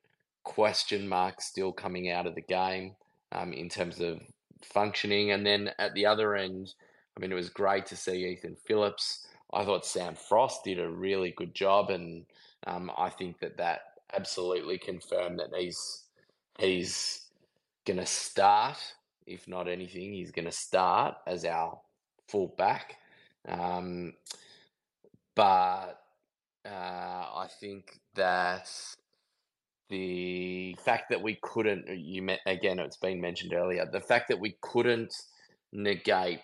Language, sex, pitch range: English, male, 90-100 Hz